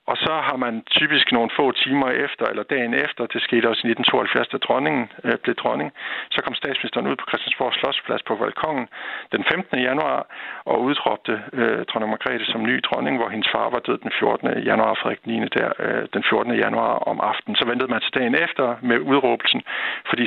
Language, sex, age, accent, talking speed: Danish, male, 60-79, native, 200 wpm